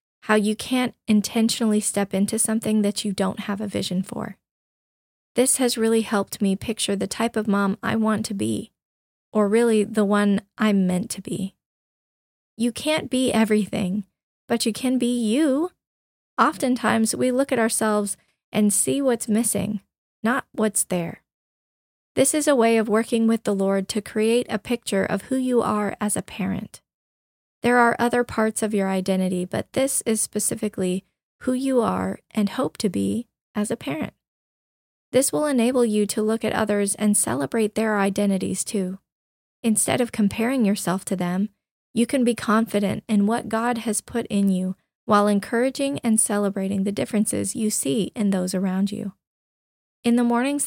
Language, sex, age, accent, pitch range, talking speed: English, female, 20-39, American, 200-235 Hz, 170 wpm